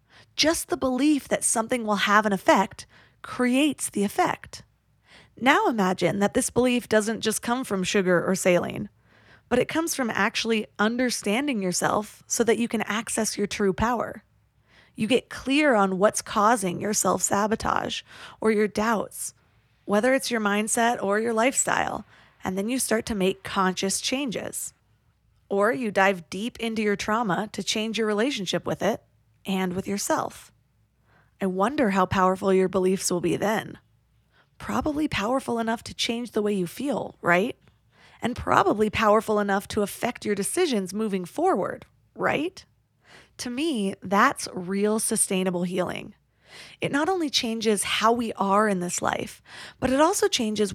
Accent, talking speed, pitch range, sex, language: American, 155 wpm, 195-240 Hz, female, English